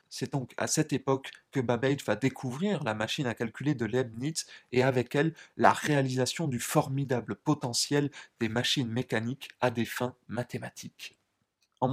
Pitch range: 125-160 Hz